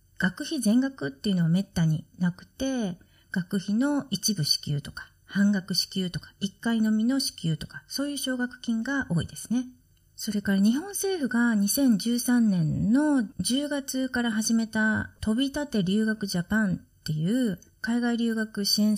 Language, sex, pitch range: Japanese, female, 175-250 Hz